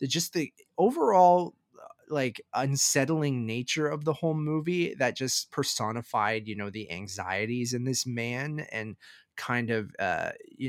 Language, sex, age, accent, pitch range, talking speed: English, male, 20-39, American, 110-130 Hz, 140 wpm